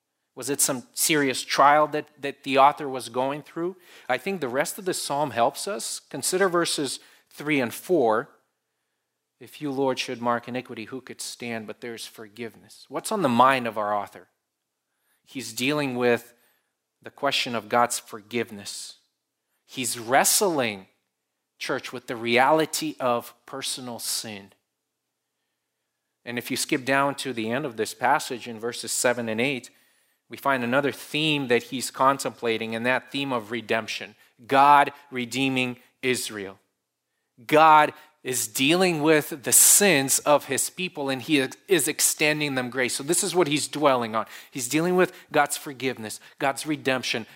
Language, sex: English, male